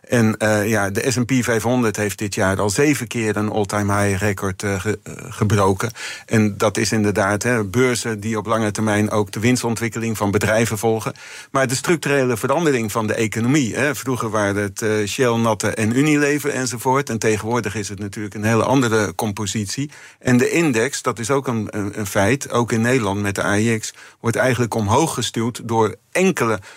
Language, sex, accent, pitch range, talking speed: Dutch, male, Dutch, 105-120 Hz, 185 wpm